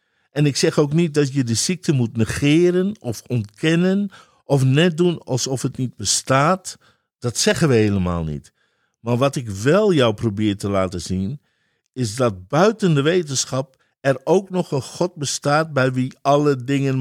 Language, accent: Dutch, Dutch